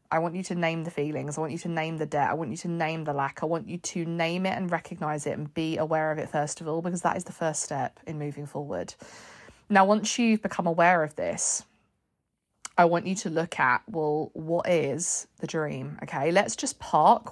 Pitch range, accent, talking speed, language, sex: 155-200 Hz, British, 240 wpm, English, female